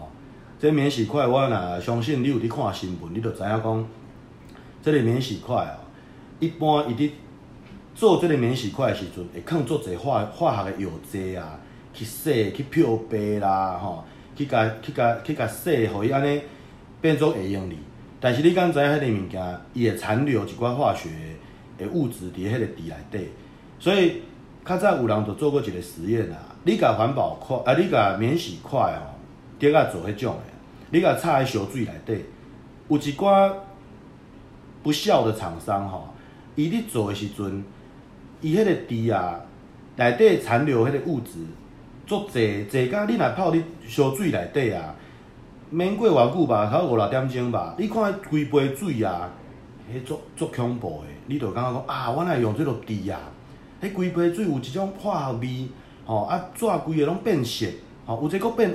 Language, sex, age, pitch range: Chinese, male, 40-59, 105-150 Hz